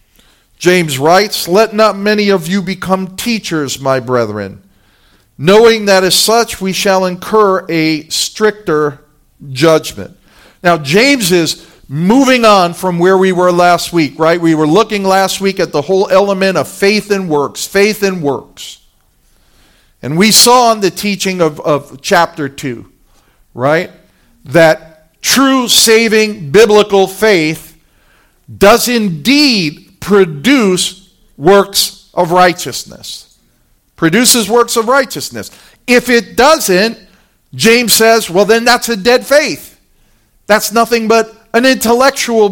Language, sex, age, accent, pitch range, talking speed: English, male, 50-69, American, 165-225 Hz, 130 wpm